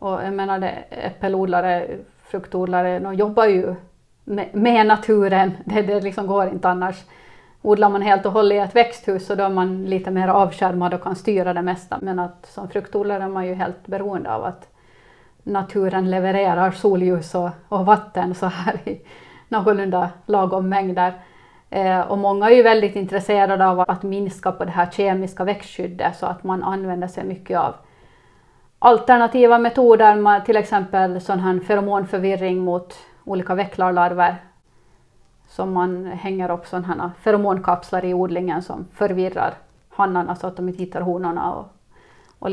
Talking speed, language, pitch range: 155 wpm, Swedish, 180-200 Hz